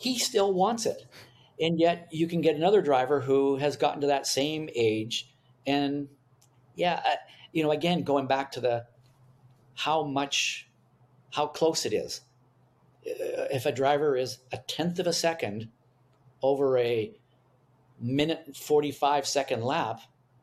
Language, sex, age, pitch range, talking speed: English, male, 50-69, 125-155 Hz, 140 wpm